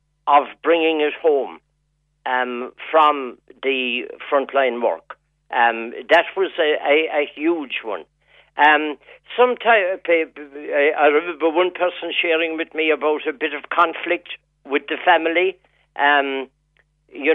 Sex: male